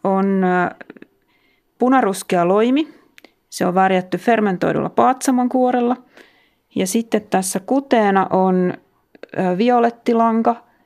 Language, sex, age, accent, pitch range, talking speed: Finnish, female, 30-49, native, 180-230 Hz, 75 wpm